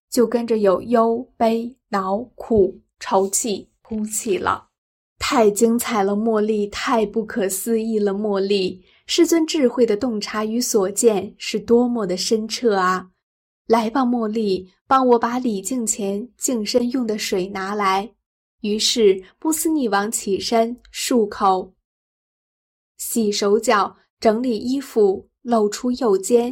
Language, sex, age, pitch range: Chinese, female, 10-29, 200-240 Hz